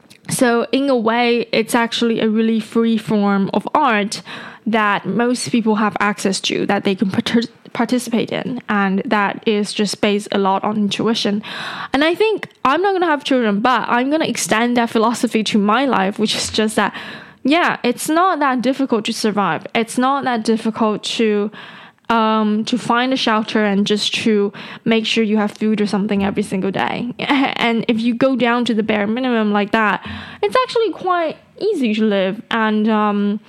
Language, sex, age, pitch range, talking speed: English, female, 10-29, 210-245 Hz, 185 wpm